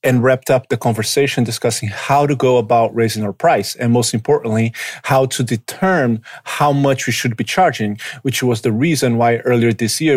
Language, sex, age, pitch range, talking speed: English, male, 30-49, 120-140 Hz, 195 wpm